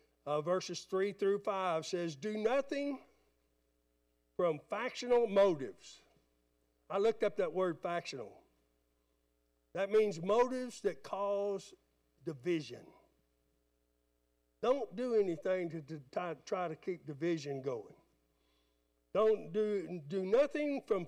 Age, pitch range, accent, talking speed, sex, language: 60-79, 145-245 Hz, American, 110 wpm, male, English